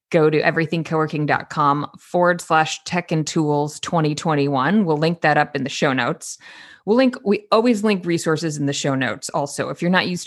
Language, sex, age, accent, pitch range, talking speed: English, female, 30-49, American, 150-190 Hz, 185 wpm